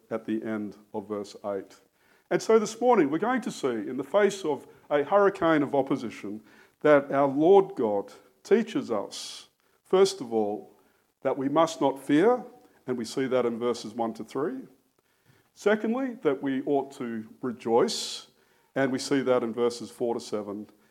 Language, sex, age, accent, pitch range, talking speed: English, male, 50-69, Australian, 105-135 Hz, 170 wpm